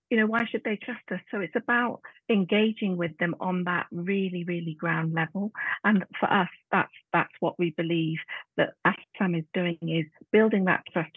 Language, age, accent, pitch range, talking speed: English, 40-59, British, 165-205 Hz, 190 wpm